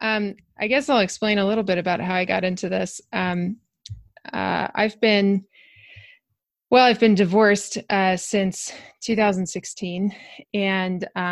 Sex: female